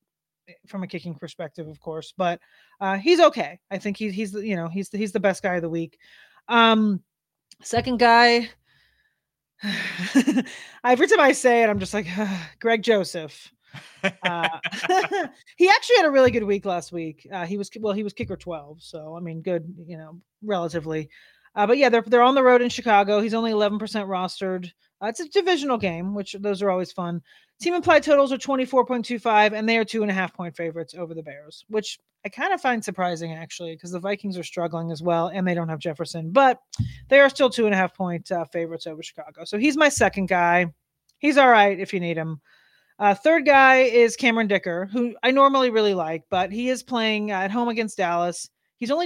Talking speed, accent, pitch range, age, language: 195 wpm, American, 175-240 Hz, 30-49, English